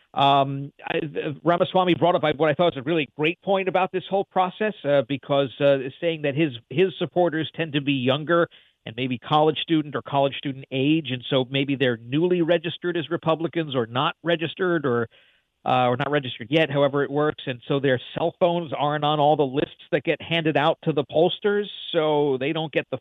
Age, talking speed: 50-69, 205 wpm